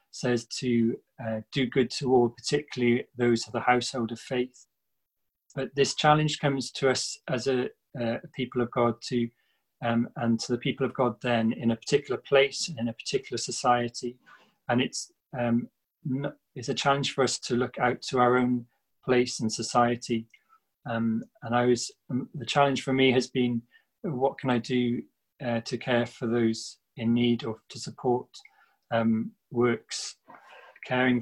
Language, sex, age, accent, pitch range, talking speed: English, male, 30-49, British, 115-130 Hz, 175 wpm